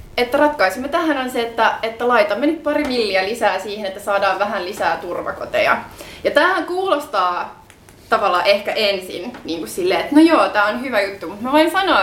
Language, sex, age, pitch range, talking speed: Finnish, female, 20-39, 190-265 Hz, 190 wpm